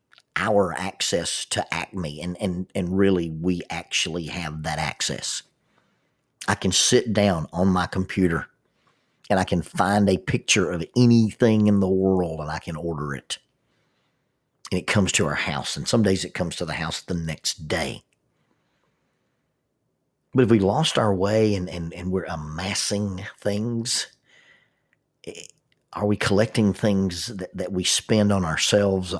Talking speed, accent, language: 155 wpm, American, English